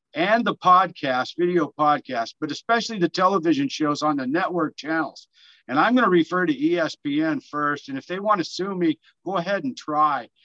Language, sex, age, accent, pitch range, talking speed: English, male, 60-79, American, 160-210 Hz, 190 wpm